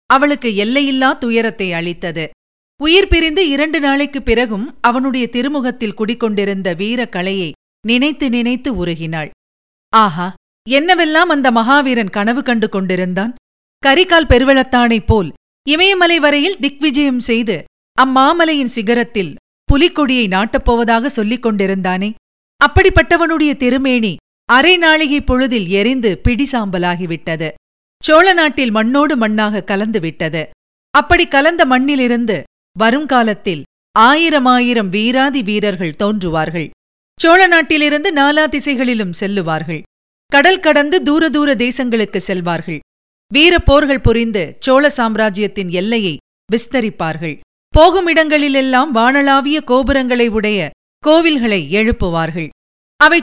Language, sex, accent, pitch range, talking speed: Tamil, female, native, 205-285 Hz, 90 wpm